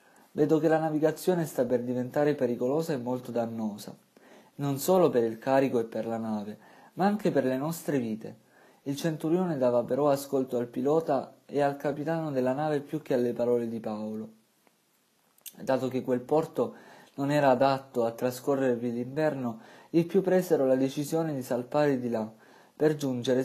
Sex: male